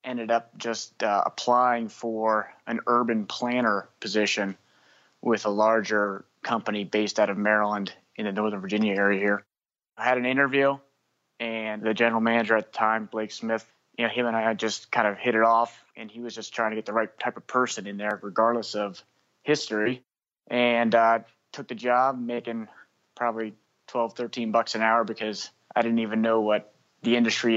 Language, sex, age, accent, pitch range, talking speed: English, male, 20-39, American, 110-120 Hz, 190 wpm